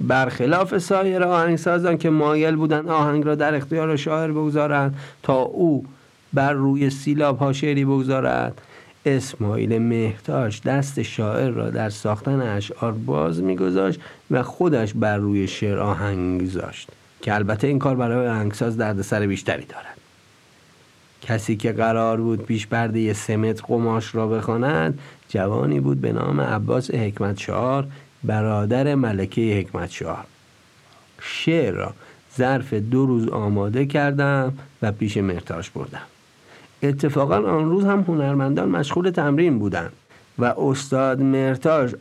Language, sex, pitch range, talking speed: Persian, male, 110-150 Hz, 125 wpm